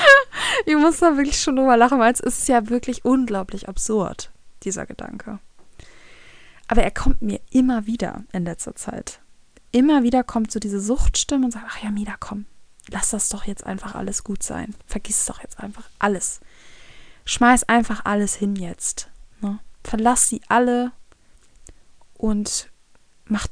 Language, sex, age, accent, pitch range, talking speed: German, female, 20-39, German, 210-260 Hz, 160 wpm